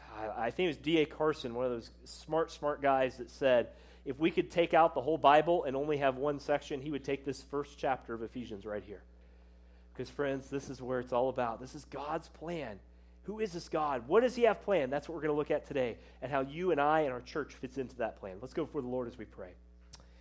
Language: English